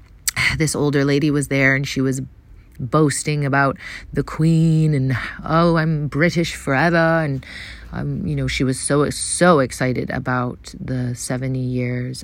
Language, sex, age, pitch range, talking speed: English, female, 30-49, 120-140 Hz, 150 wpm